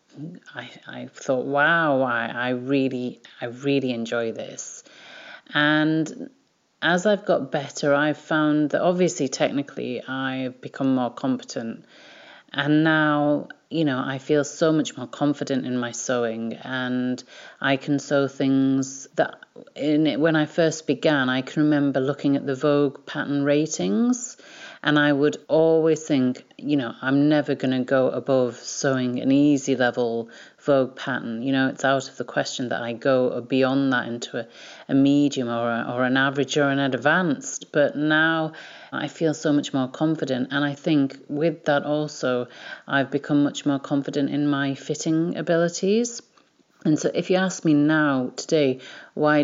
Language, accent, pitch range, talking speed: English, British, 130-155 Hz, 160 wpm